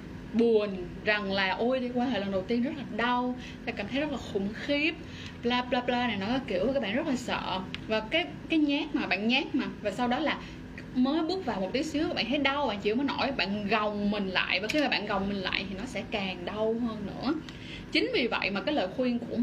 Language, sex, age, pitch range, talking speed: Vietnamese, female, 10-29, 205-275 Hz, 255 wpm